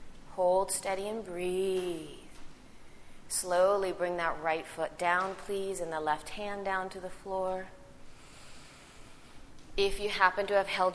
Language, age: English, 30-49